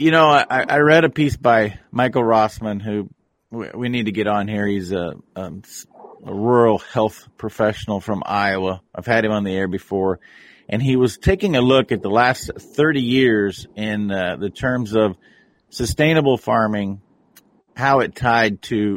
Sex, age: male, 40-59